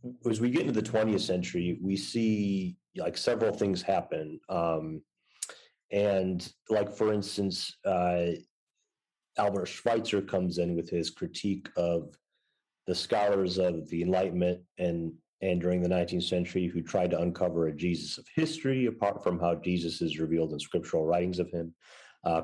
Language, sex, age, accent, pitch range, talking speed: English, male, 30-49, American, 85-110 Hz, 155 wpm